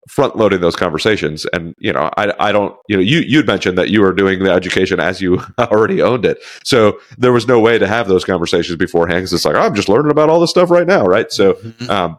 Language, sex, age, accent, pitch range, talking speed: English, male, 30-49, American, 85-105 Hz, 250 wpm